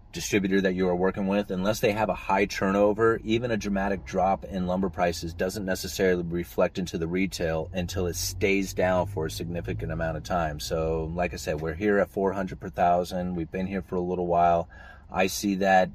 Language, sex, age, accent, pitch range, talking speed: English, male, 30-49, American, 85-95 Hz, 210 wpm